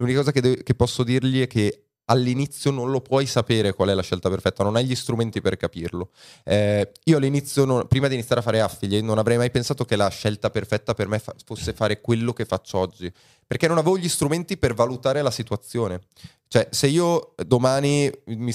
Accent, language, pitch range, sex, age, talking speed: native, Italian, 105-135 Hz, male, 20-39, 205 wpm